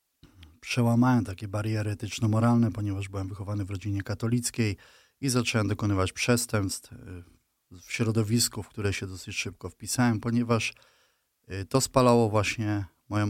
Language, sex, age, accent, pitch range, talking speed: Polish, male, 20-39, native, 95-110 Hz, 120 wpm